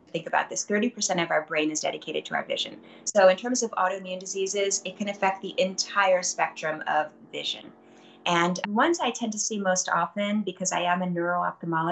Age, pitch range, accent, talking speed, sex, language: 30-49, 170-205 Hz, American, 190 wpm, female, English